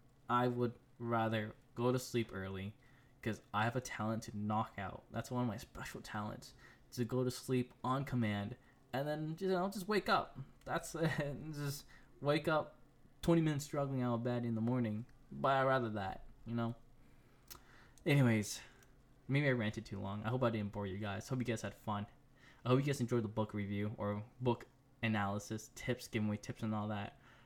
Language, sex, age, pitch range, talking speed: English, male, 10-29, 110-130 Hz, 195 wpm